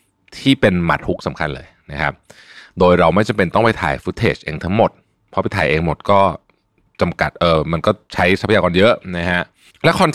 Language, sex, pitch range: Thai, male, 85-105 Hz